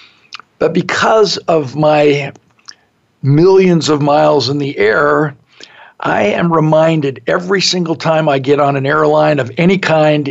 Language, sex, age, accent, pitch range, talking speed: English, male, 50-69, American, 145-175 Hz, 140 wpm